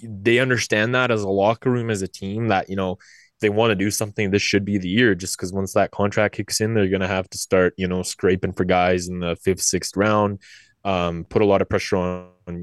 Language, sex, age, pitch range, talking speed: English, male, 20-39, 95-115 Hz, 250 wpm